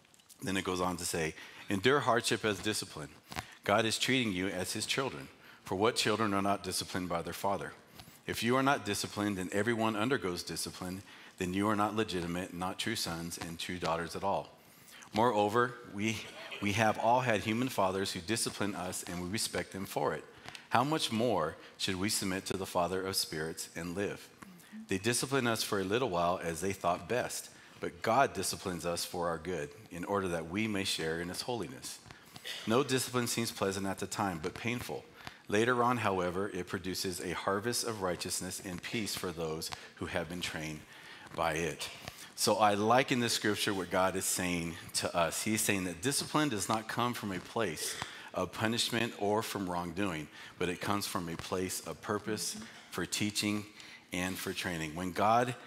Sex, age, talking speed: male, 40-59, 190 wpm